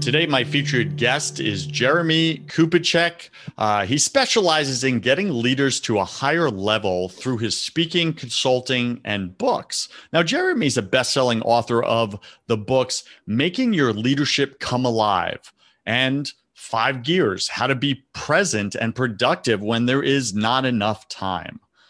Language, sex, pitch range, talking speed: English, male, 110-145 Hz, 140 wpm